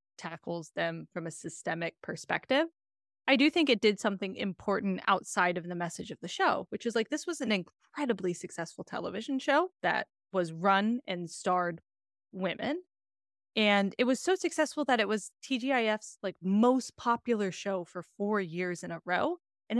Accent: American